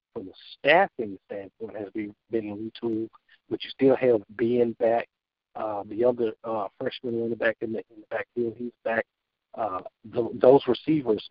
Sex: male